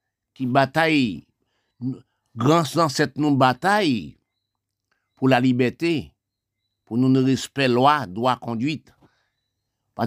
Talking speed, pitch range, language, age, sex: 115 wpm, 110-155 Hz, French, 60-79, male